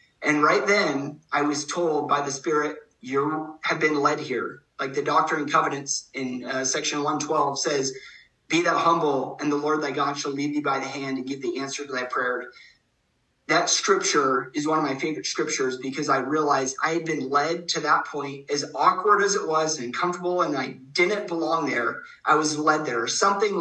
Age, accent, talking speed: 30-49, American, 205 wpm